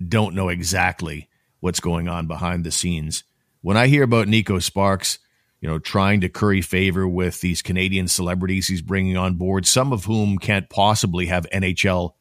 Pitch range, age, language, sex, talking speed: 90-110 Hz, 50-69, English, male, 175 wpm